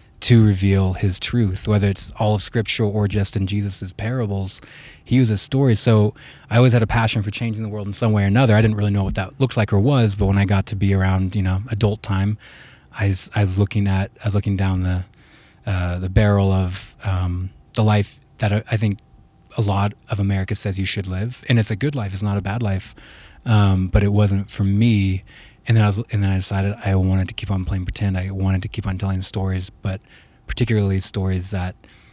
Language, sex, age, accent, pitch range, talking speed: English, male, 20-39, American, 95-110 Hz, 225 wpm